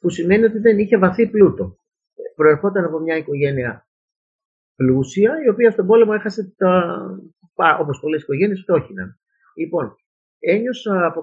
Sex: male